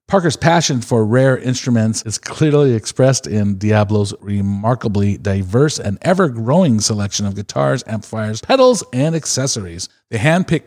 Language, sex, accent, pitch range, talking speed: English, male, American, 110-140 Hz, 130 wpm